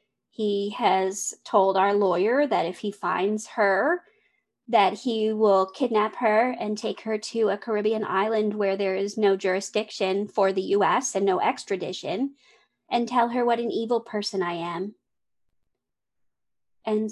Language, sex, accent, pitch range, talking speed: English, female, American, 195-240 Hz, 150 wpm